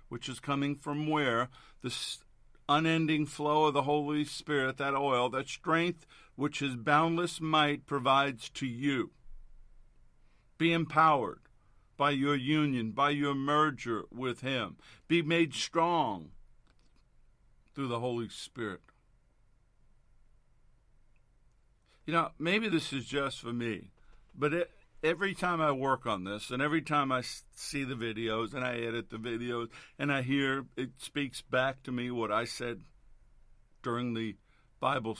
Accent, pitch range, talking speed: American, 120-145 Hz, 140 wpm